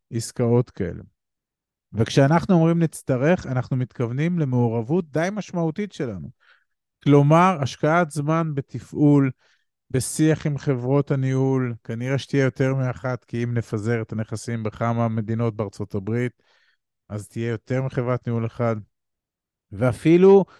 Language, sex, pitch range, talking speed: Hebrew, male, 120-155 Hz, 115 wpm